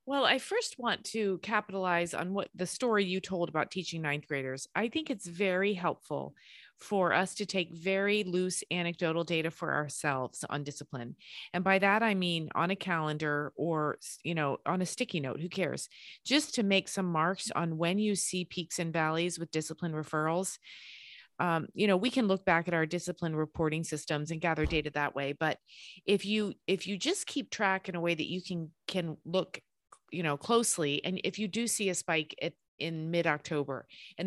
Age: 30-49